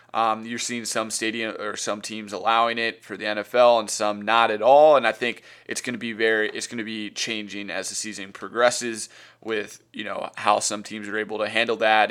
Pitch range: 105-120 Hz